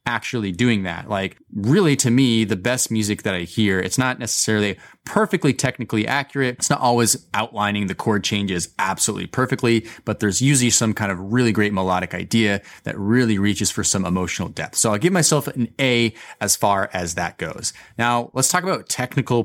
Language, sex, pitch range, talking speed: English, male, 100-130 Hz, 190 wpm